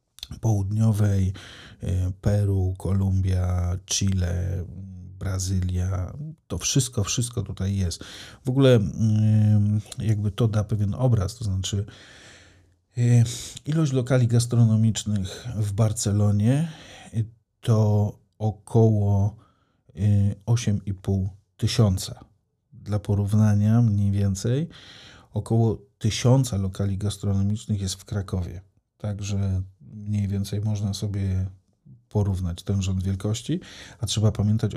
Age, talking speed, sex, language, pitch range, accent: 40-59, 90 wpm, male, Polish, 100-115 Hz, native